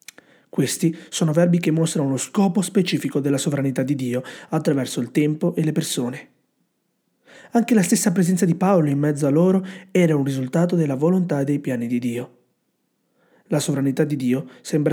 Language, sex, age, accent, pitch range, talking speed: Italian, male, 30-49, native, 135-170 Hz, 175 wpm